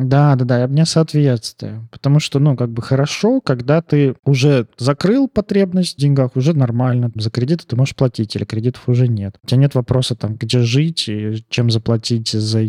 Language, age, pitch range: Russian, 20-39, 115-150 Hz